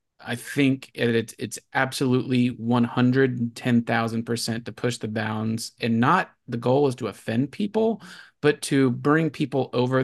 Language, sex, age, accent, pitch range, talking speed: English, male, 30-49, American, 115-135 Hz, 135 wpm